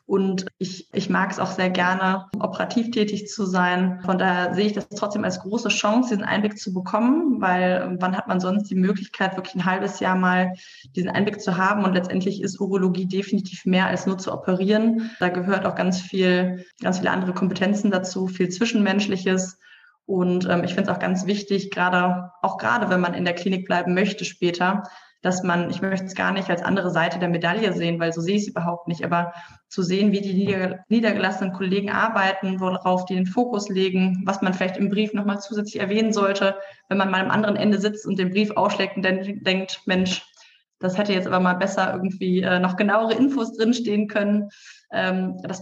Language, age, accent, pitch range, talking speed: German, 20-39, German, 185-210 Hz, 200 wpm